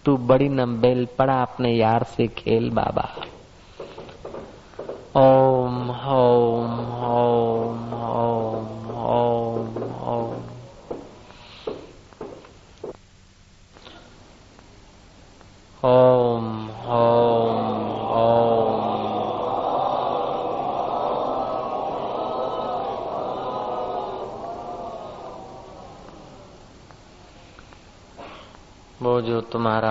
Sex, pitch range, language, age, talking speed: male, 100-115 Hz, Hindi, 30-49, 30 wpm